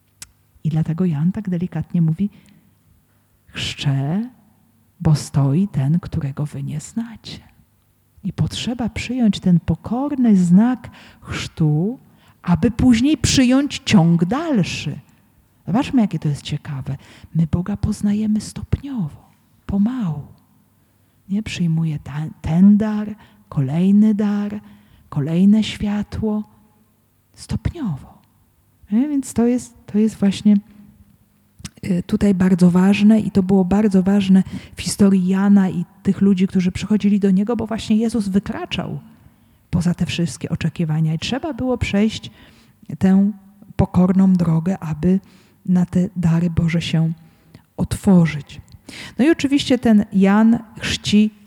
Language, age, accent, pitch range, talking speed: Polish, 40-59, native, 155-205 Hz, 110 wpm